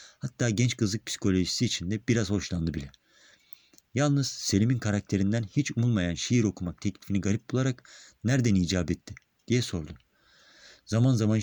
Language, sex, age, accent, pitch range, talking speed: Turkish, male, 50-69, native, 95-120 Hz, 135 wpm